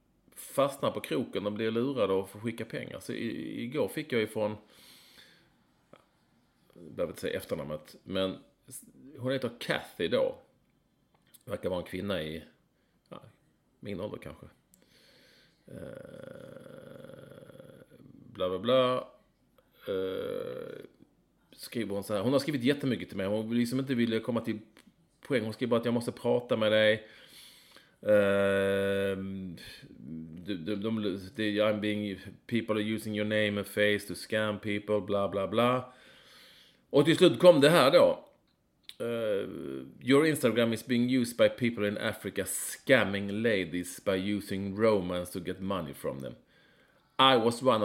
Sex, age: male, 30-49